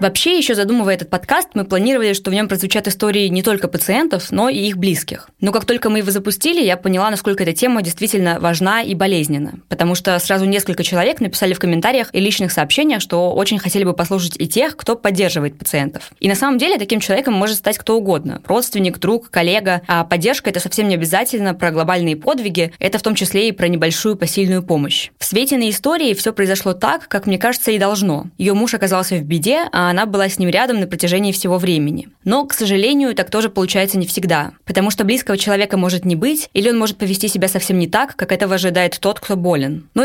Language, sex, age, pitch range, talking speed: Russian, female, 20-39, 185-220 Hz, 215 wpm